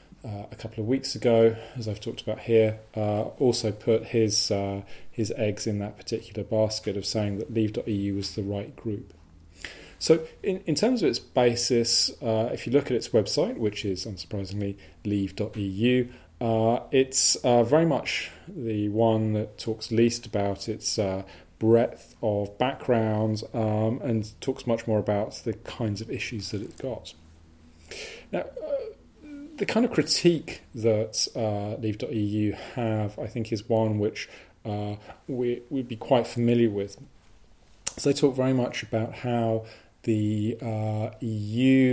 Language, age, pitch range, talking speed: English, 30-49, 105-120 Hz, 155 wpm